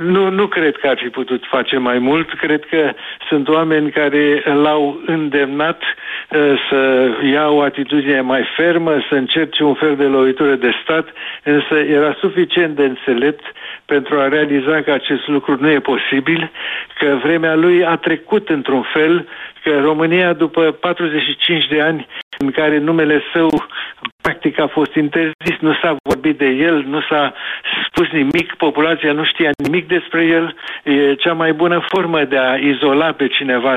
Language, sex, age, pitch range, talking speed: Romanian, male, 60-79, 145-165 Hz, 160 wpm